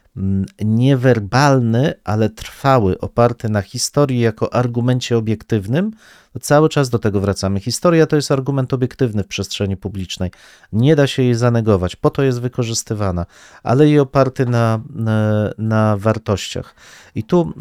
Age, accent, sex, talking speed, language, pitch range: 40-59, native, male, 135 wpm, Polish, 105-125 Hz